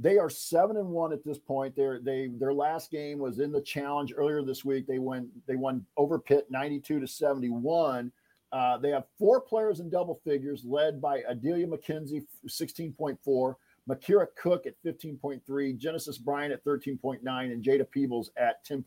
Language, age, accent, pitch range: English, 50-69, American, 130-165 Hz